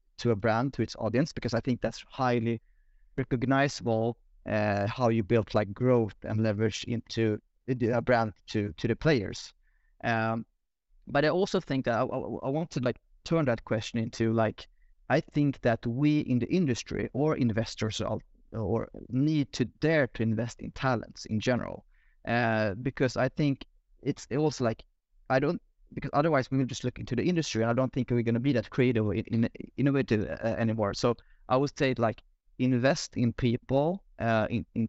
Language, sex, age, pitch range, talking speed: English, male, 30-49, 110-130 Hz, 180 wpm